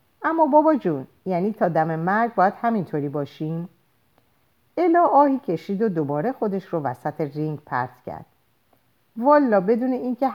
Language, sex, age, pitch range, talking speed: Persian, female, 50-69, 140-225 Hz, 140 wpm